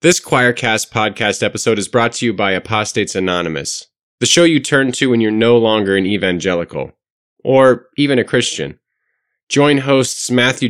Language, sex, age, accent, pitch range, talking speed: English, male, 30-49, American, 115-170 Hz, 165 wpm